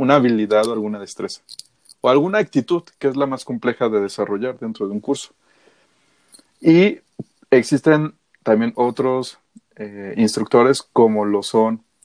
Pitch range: 110-145 Hz